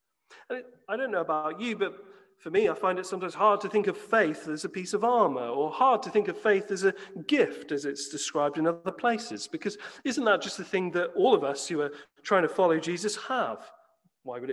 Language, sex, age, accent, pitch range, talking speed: English, male, 40-59, British, 150-225 Hz, 230 wpm